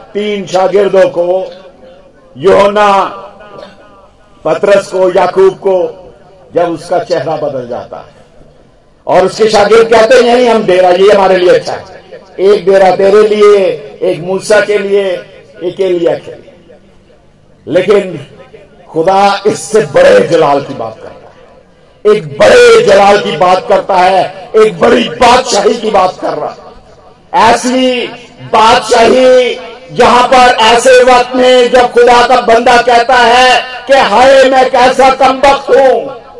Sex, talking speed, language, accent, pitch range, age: male, 135 wpm, Hindi, native, 200-275 Hz, 50-69